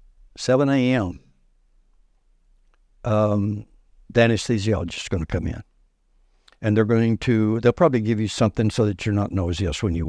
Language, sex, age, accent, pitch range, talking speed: English, male, 60-79, American, 90-115 Hz, 150 wpm